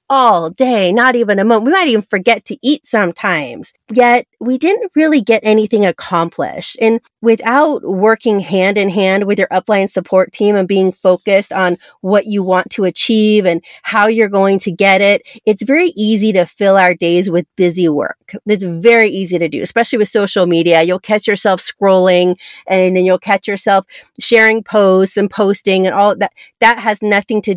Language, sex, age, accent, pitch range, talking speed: English, female, 30-49, American, 185-230 Hz, 185 wpm